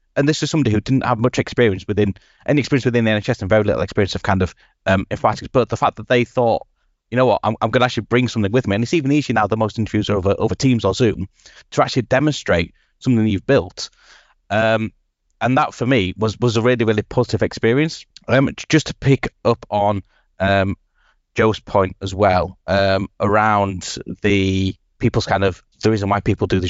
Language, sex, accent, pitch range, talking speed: English, male, British, 100-120 Hz, 220 wpm